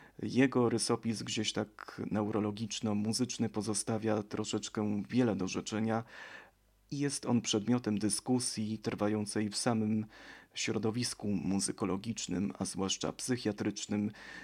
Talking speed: 95 wpm